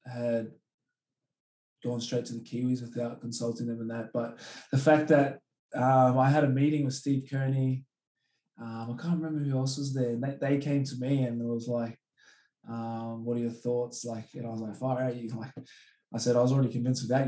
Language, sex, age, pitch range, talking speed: English, male, 20-39, 115-135 Hz, 215 wpm